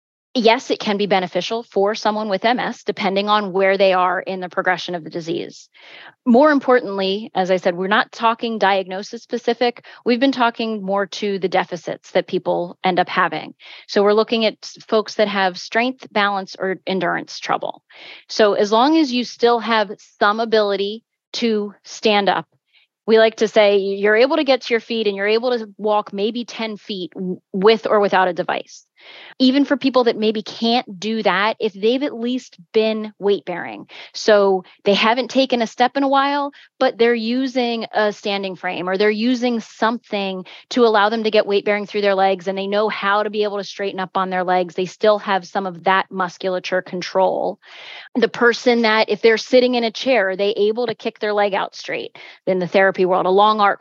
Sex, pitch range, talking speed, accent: female, 195-230 Hz, 195 wpm, American